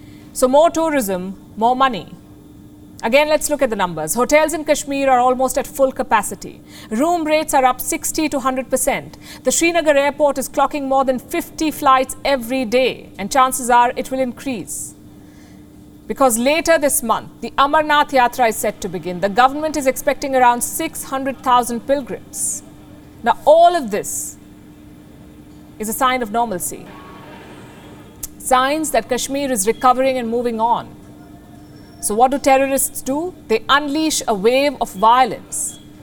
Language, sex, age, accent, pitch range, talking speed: English, female, 50-69, Indian, 245-290 Hz, 150 wpm